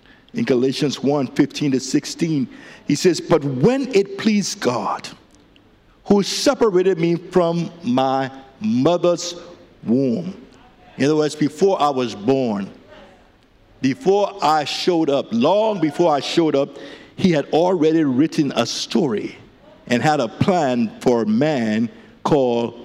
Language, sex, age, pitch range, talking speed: English, male, 60-79, 130-200 Hz, 130 wpm